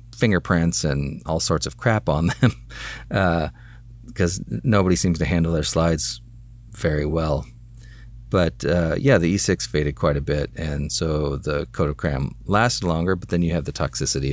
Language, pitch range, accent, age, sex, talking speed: English, 85-115 Hz, American, 40-59, male, 165 wpm